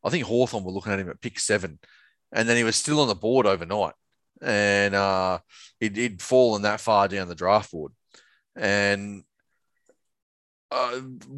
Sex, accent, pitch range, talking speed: male, Australian, 100-135 Hz, 170 wpm